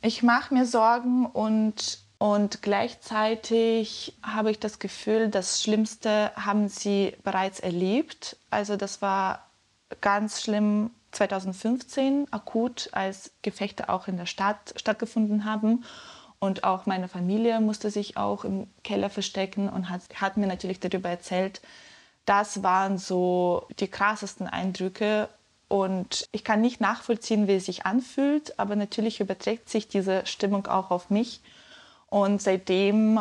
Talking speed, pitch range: 135 wpm, 190-220 Hz